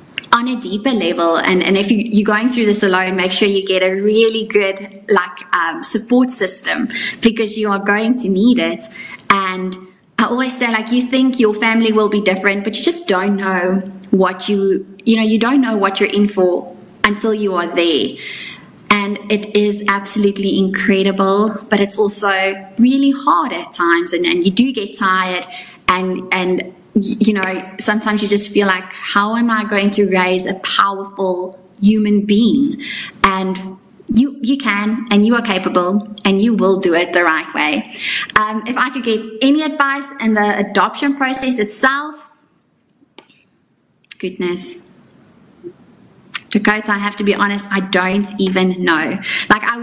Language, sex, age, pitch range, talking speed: English, female, 20-39, 190-230 Hz, 170 wpm